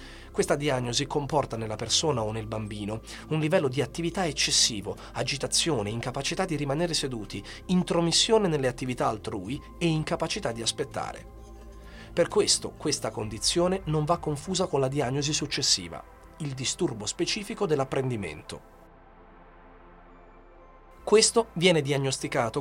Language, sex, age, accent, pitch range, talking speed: Italian, male, 40-59, native, 120-165 Hz, 115 wpm